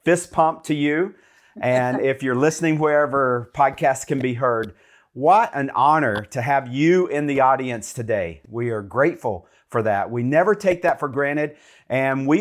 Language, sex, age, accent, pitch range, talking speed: English, male, 40-59, American, 120-155 Hz, 175 wpm